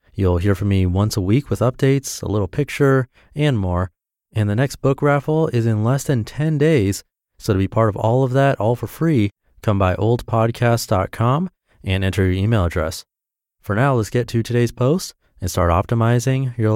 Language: English